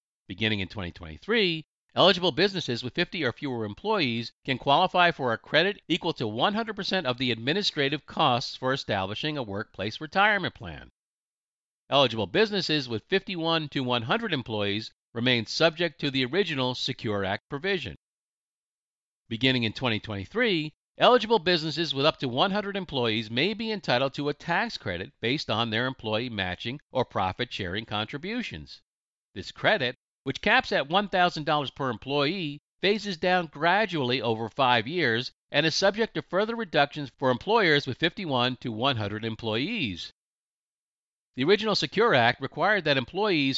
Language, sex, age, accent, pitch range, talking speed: English, male, 50-69, American, 115-175 Hz, 140 wpm